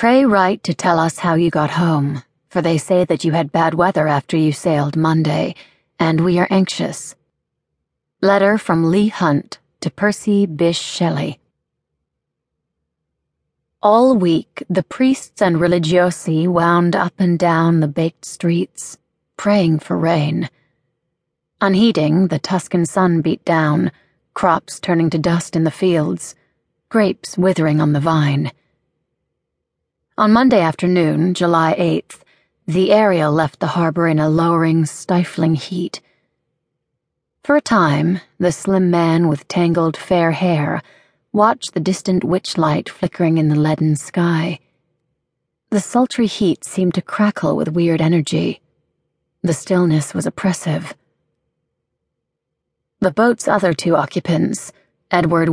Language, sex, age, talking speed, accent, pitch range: English, female, 30-49, 130 wpm, American, 160-185 Hz